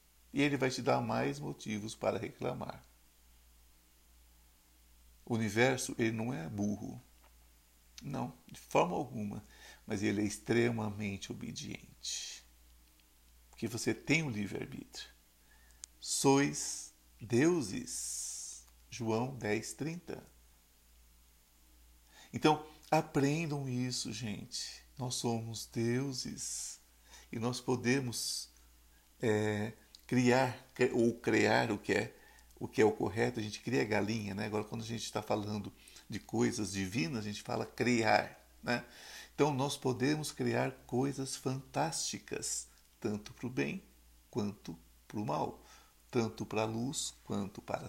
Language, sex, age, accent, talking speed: Portuguese, male, 50-69, Brazilian, 115 wpm